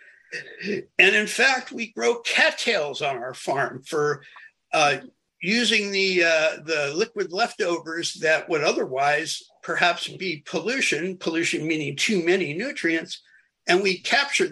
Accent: American